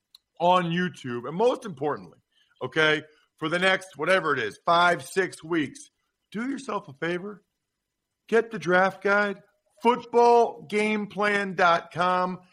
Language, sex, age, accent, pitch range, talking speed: English, male, 50-69, American, 165-195 Hz, 115 wpm